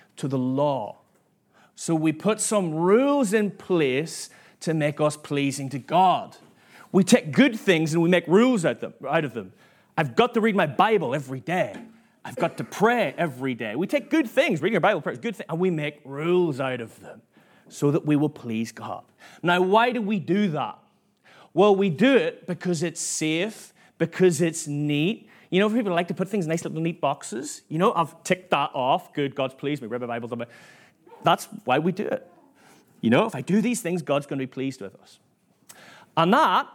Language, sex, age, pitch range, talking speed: English, male, 30-49, 140-190 Hz, 205 wpm